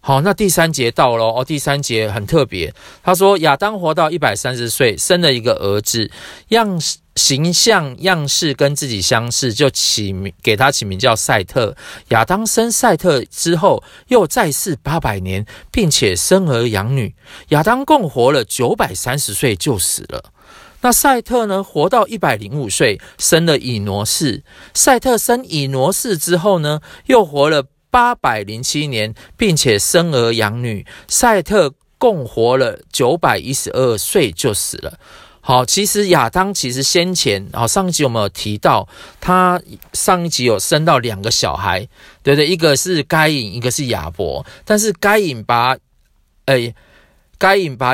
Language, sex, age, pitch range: Chinese, male, 40-59, 120-185 Hz